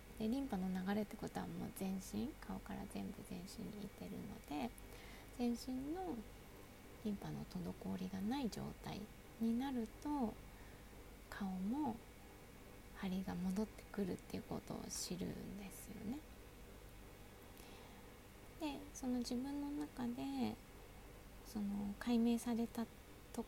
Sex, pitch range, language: female, 190-235 Hz, Japanese